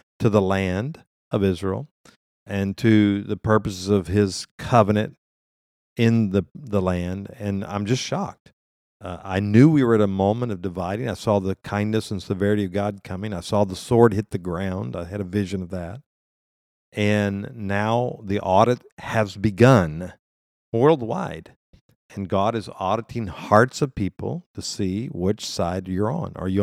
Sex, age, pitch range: male, 50-69, 95-115 Hz